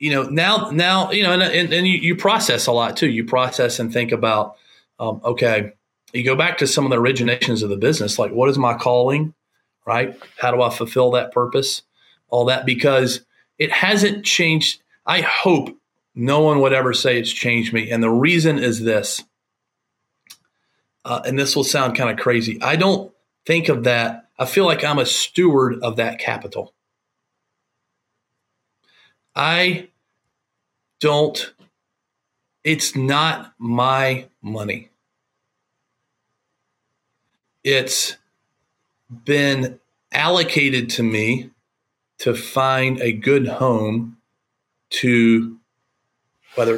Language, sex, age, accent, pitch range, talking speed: English, male, 40-59, American, 120-140 Hz, 135 wpm